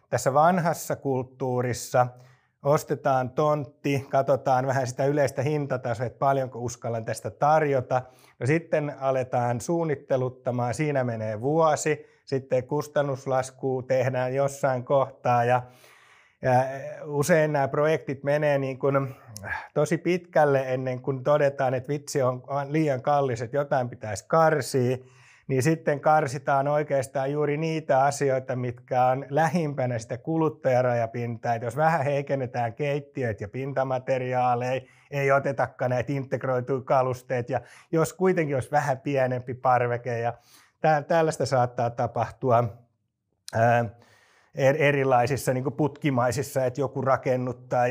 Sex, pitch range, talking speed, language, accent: male, 125-145 Hz, 115 wpm, Finnish, native